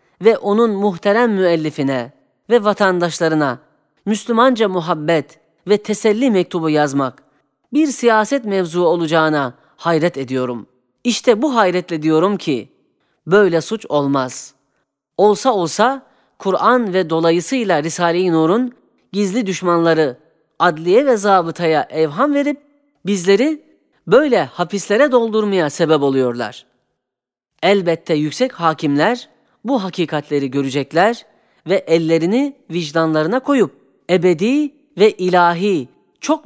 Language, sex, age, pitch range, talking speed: Turkish, female, 10-29, 155-210 Hz, 100 wpm